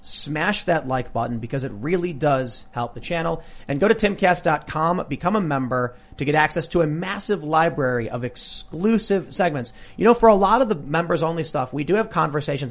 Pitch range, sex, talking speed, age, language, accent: 125-170 Hz, male, 200 wpm, 30-49, English, American